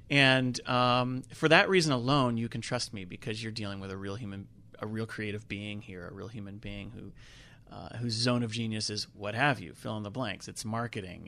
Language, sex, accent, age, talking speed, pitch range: English, male, American, 30-49, 225 wpm, 105-130 Hz